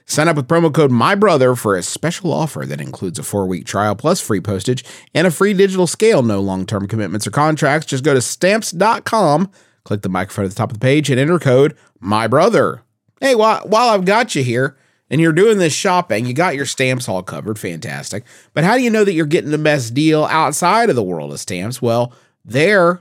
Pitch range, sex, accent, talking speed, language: 115-185 Hz, male, American, 215 wpm, English